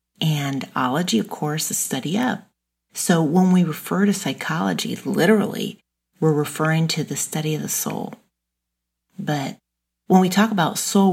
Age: 40-59